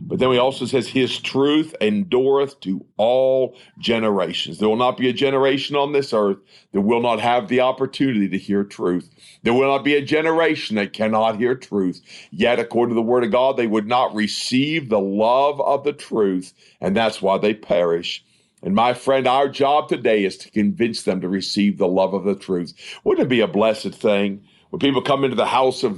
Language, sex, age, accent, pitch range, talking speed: English, male, 50-69, American, 105-135 Hz, 210 wpm